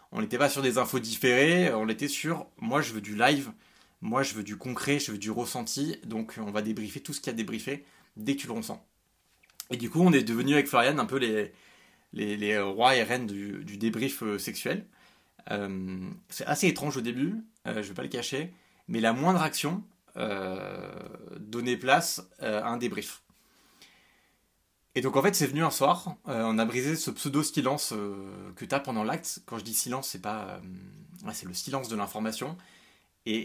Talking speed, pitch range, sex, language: 215 wpm, 110-155 Hz, male, French